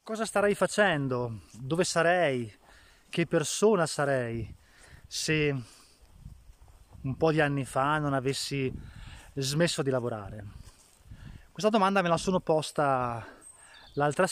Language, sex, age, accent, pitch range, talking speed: Italian, male, 20-39, native, 120-155 Hz, 110 wpm